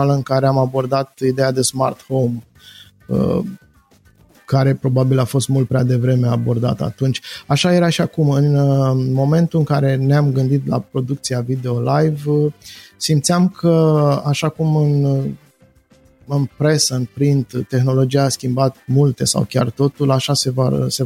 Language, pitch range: Romanian, 125-145 Hz